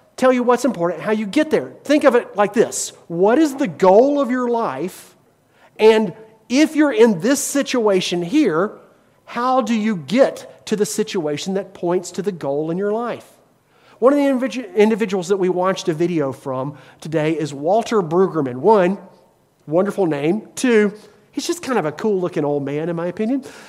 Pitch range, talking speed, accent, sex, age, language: 165-230 Hz, 180 wpm, American, male, 40-59, English